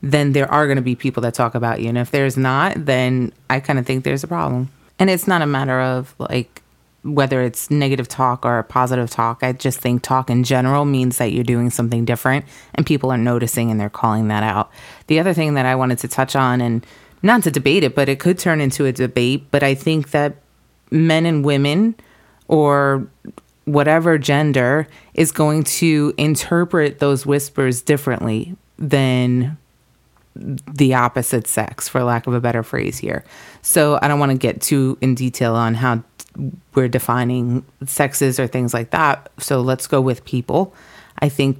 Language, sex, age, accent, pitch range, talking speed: English, female, 30-49, American, 125-150 Hz, 190 wpm